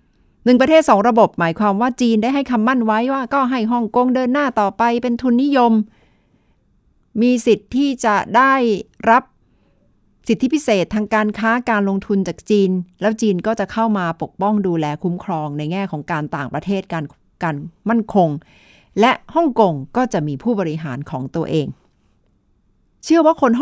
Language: Thai